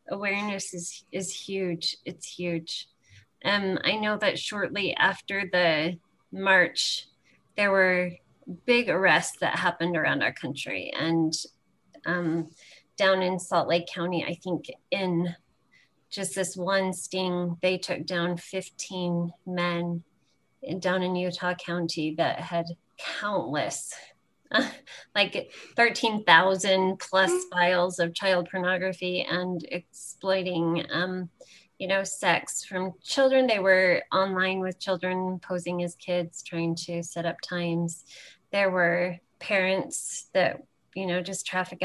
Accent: American